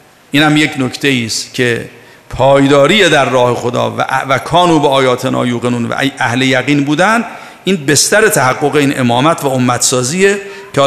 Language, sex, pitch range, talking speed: Persian, male, 130-175 Hz, 155 wpm